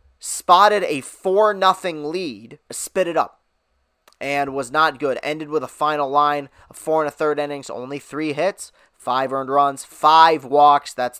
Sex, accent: male, American